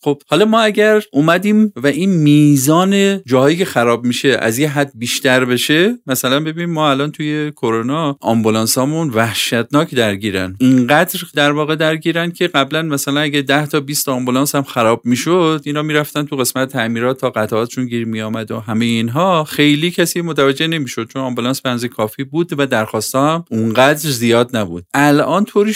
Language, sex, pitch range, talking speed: Persian, male, 115-150 Hz, 165 wpm